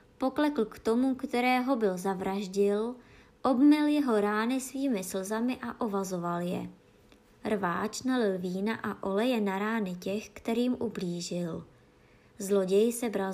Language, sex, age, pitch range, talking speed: Czech, male, 20-39, 195-250 Hz, 115 wpm